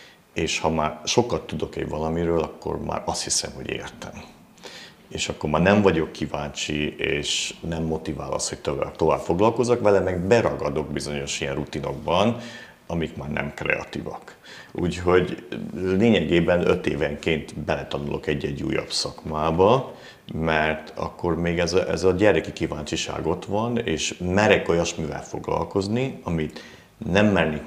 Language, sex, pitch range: Hungarian, male, 75-95 Hz